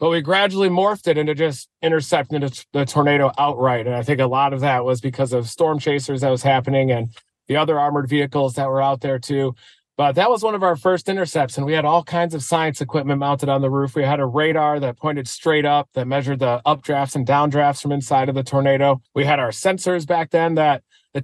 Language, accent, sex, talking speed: English, American, male, 235 wpm